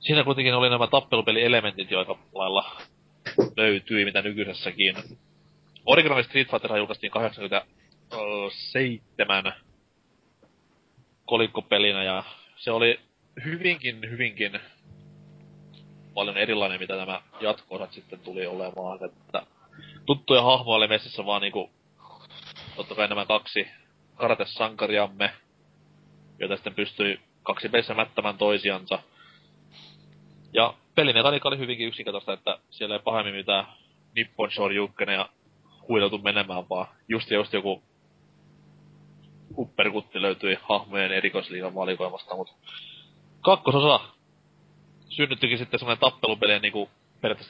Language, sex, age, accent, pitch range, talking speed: Finnish, male, 30-49, native, 100-125 Hz, 100 wpm